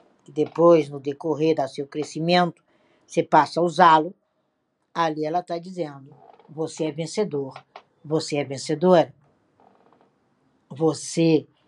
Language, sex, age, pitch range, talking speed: Portuguese, female, 60-79, 165-240 Hz, 110 wpm